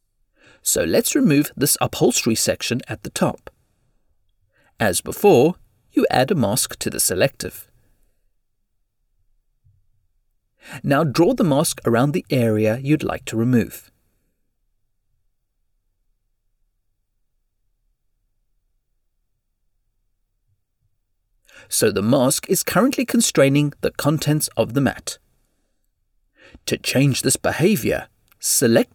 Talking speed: 95 wpm